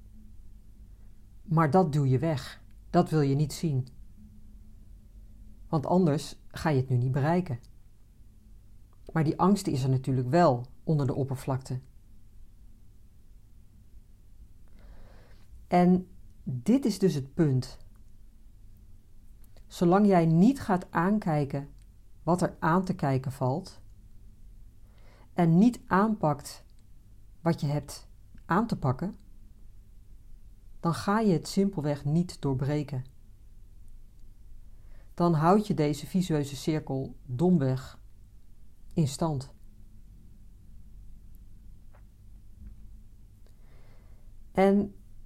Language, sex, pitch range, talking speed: Dutch, female, 100-155 Hz, 95 wpm